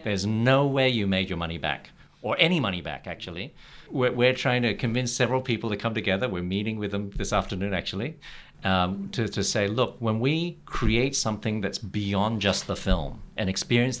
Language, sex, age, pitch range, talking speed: English, male, 50-69, 95-130 Hz, 195 wpm